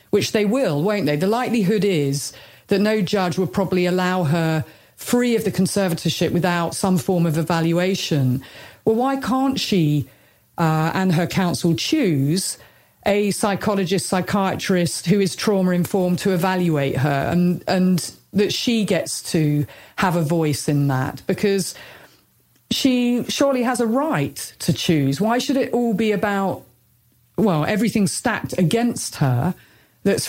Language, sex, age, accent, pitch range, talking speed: English, female, 40-59, British, 165-205 Hz, 145 wpm